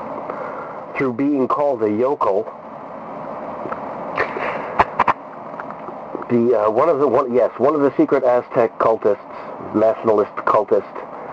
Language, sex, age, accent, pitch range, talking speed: English, male, 50-69, American, 105-140 Hz, 105 wpm